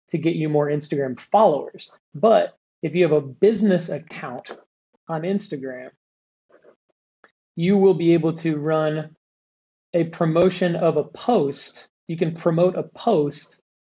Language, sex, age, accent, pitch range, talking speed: English, male, 30-49, American, 150-175 Hz, 135 wpm